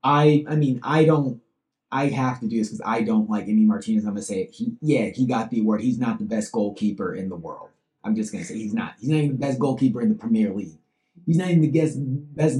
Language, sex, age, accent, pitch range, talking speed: English, male, 30-49, American, 125-170 Hz, 270 wpm